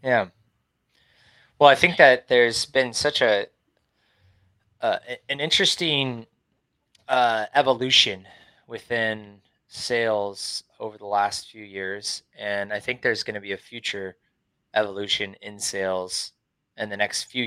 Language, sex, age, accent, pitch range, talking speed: English, male, 20-39, American, 100-120 Hz, 125 wpm